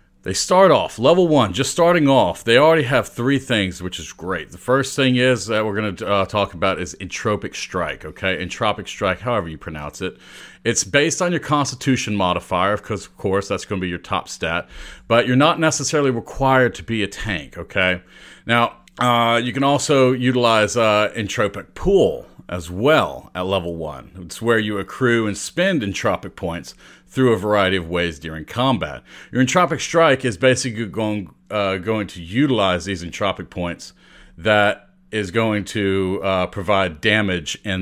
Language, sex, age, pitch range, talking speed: English, male, 40-59, 90-125 Hz, 180 wpm